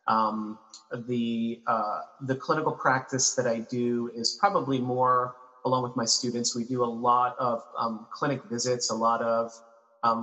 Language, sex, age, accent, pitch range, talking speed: English, male, 30-49, American, 110-125 Hz, 165 wpm